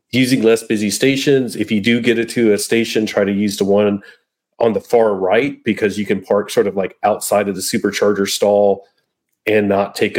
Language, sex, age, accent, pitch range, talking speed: English, male, 40-59, American, 105-145 Hz, 210 wpm